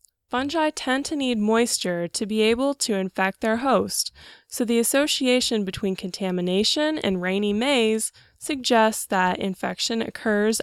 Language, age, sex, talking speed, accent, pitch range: English, 10-29, female, 135 wpm, American, 195-255 Hz